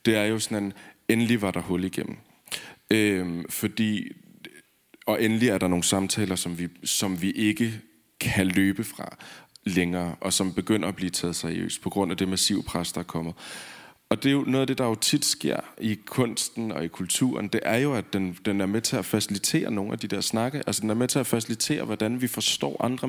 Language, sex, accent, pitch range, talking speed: English, male, Danish, 95-125 Hz, 225 wpm